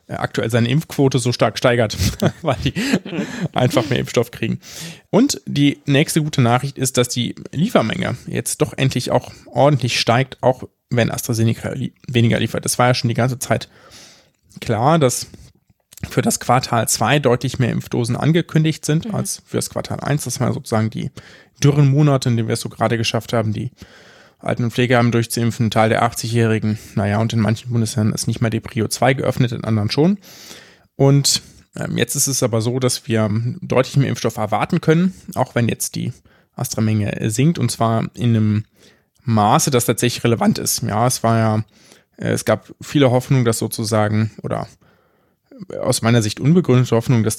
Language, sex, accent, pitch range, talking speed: German, male, German, 115-135 Hz, 175 wpm